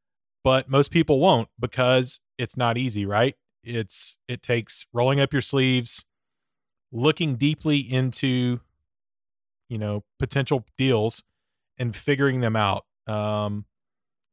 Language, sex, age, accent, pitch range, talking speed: English, male, 30-49, American, 110-135 Hz, 115 wpm